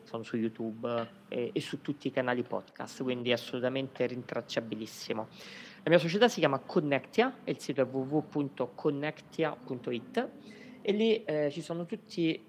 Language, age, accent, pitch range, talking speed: Italian, 20-39, native, 120-160 Hz, 150 wpm